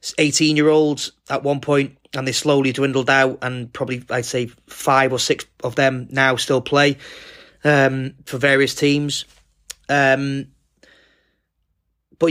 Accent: British